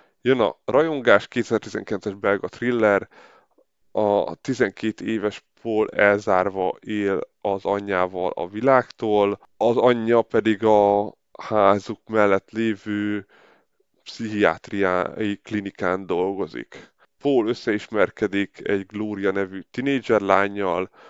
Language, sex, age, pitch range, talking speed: Hungarian, male, 20-39, 100-110 Hz, 95 wpm